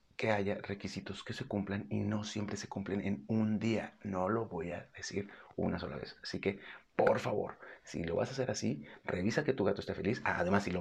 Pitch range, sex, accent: 100-120 Hz, male, Mexican